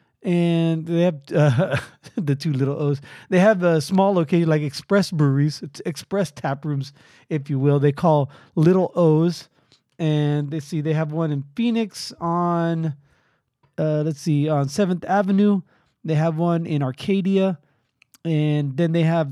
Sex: male